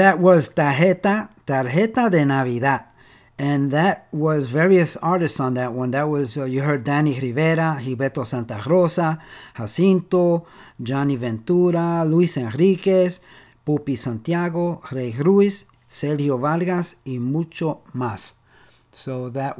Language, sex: English, male